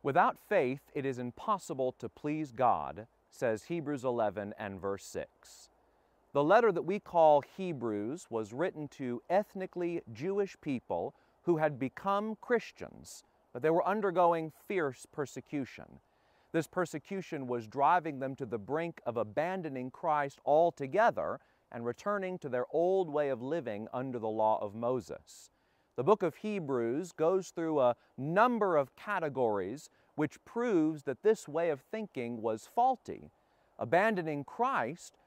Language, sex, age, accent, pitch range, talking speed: English, male, 40-59, American, 130-180 Hz, 140 wpm